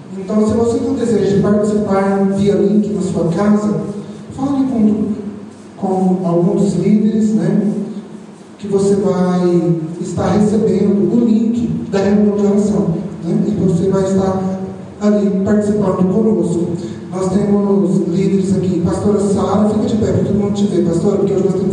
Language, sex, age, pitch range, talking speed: Portuguese, male, 40-59, 185-205 Hz, 150 wpm